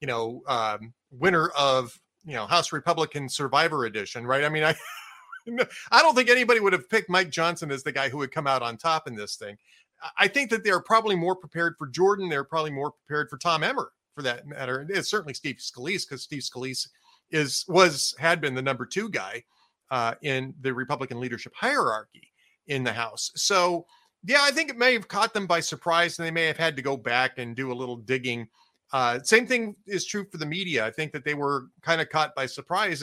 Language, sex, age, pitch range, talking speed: English, male, 40-59, 135-190 Hz, 220 wpm